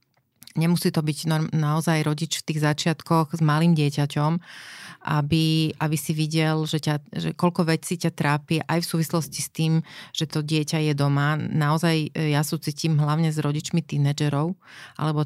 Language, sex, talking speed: Slovak, female, 155 wpm